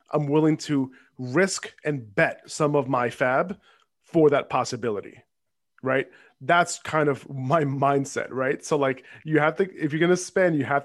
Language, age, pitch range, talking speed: English, 30-49, 130-155 Hz, 175 wpm